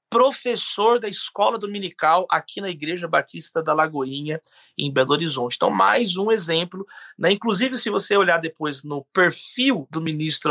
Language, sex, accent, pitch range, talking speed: Portuguese, male, Brazilian, 150-235 Hz, 155 wpm